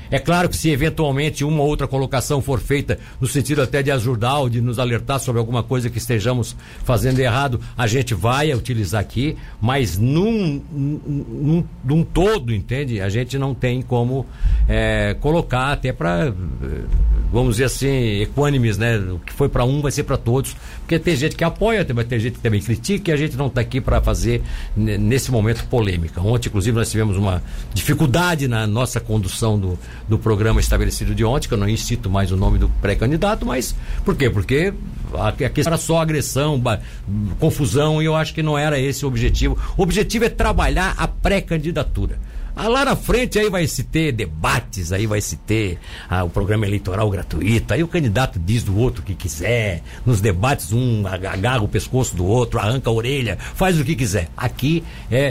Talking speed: 190 wpm